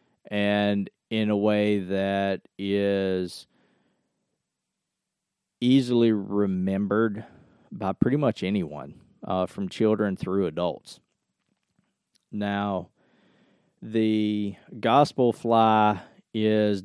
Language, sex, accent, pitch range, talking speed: English, male, American, 95-115 Hz, 80 wpm